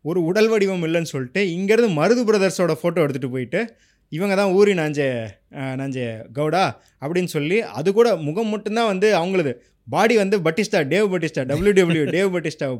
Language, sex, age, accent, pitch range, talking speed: Tamil, male, 20-39, native, 135-195 Hz, 155 wpm